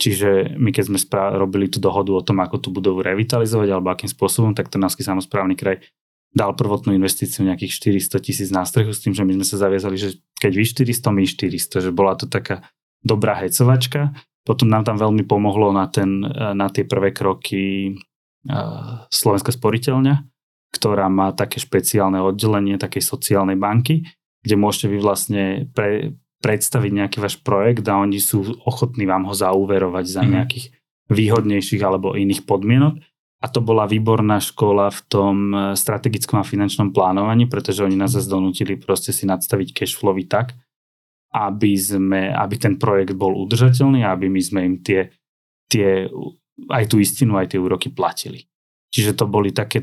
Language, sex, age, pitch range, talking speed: Slovak, male, 20-39, 95-125 Hz, 165 wpm